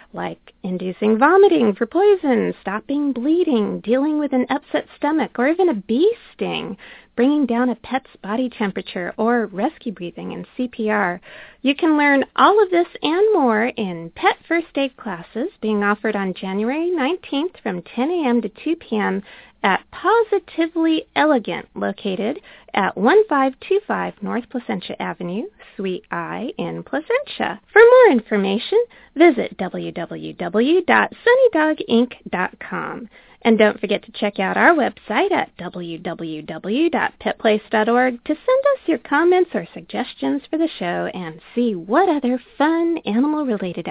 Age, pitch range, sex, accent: 30-49, 210-315 Hz, female, American